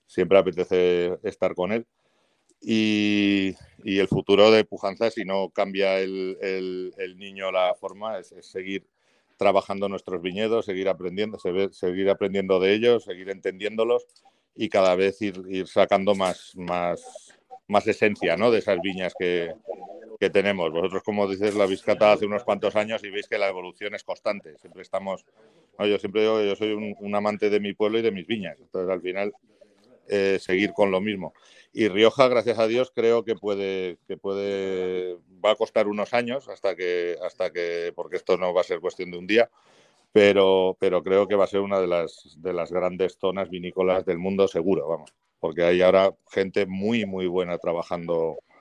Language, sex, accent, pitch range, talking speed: Spanish, male, Spanish, 95-105 Hz, 185 wpm